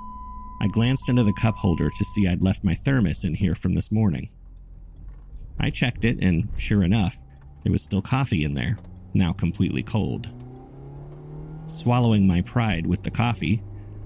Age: 30-49